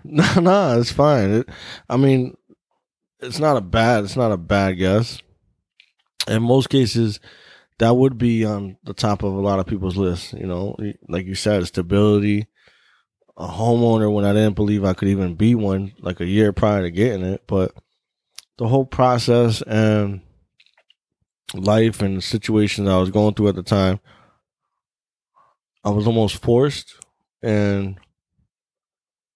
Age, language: 20-39, English